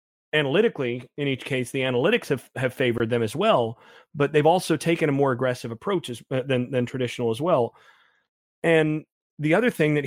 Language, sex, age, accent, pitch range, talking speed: English, male, 30-49, American, 120-145 Hz, 190 wpm